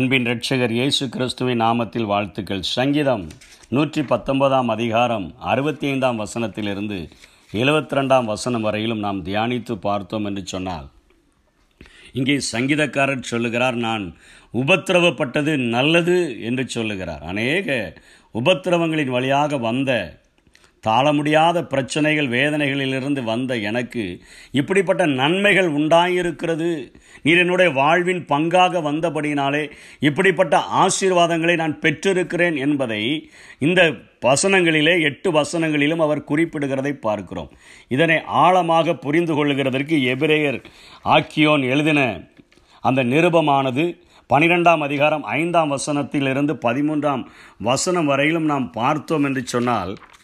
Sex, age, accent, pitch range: male, 50-69, native, 120-160 Hz